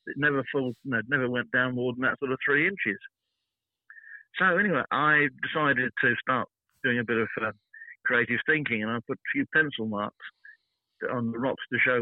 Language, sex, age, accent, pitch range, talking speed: English, male, 50-69, British, 120-155 Hz, 200 wpm